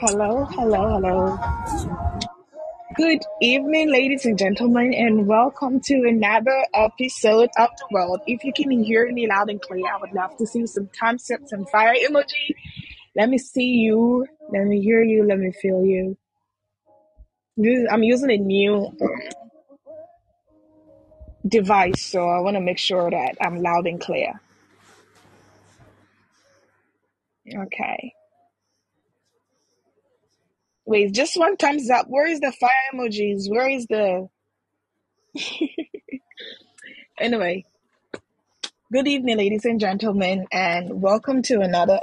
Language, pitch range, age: Japanese, 195-260 Hz, 20-39